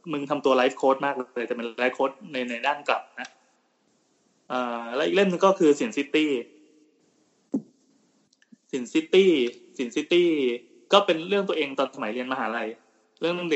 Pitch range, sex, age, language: 125-155 Hz, male, 20-39, Thai